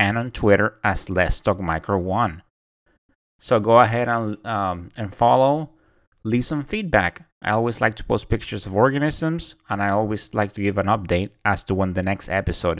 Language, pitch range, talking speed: English, 95-120 Hz, 175 wpm